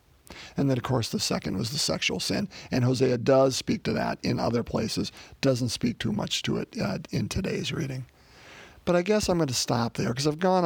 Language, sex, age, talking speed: English, male, 40-59, 225 wpm